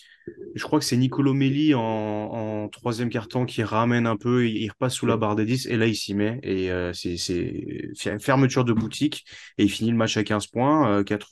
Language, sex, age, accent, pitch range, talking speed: French, male, 20-39, French, 105-125 Hz, 230 wpm